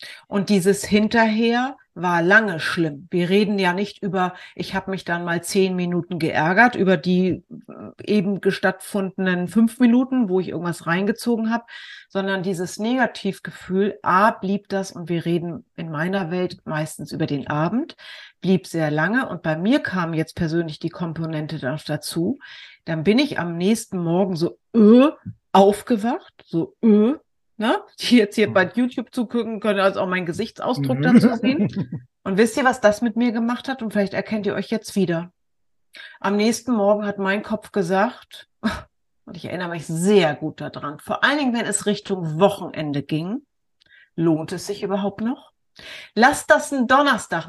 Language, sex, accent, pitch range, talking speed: German, female, German, 175-225 Hz, 165 wpm